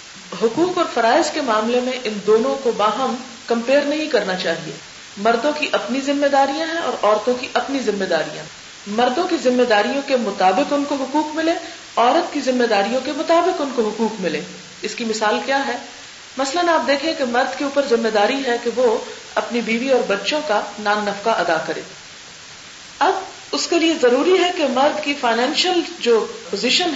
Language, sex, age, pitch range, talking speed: Urdu, female, 50-69, 210-290 Hz, 185 wpm